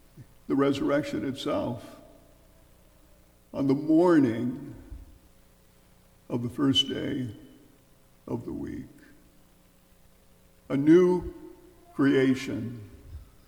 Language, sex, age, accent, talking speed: English, male, 60-79, American, 70 wpm